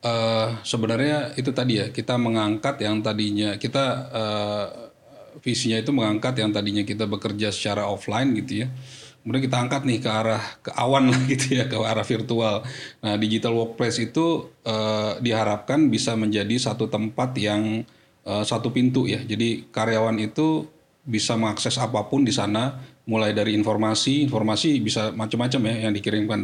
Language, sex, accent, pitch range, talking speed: Indonesian, male, native, 105-125 Hz, 150 wpm